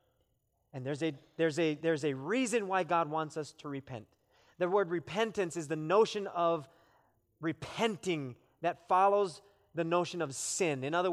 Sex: male